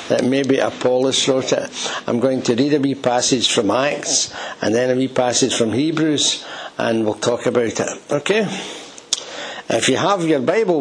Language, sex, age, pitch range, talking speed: English, male, 60-79, 135-170 Hz, 170 wpm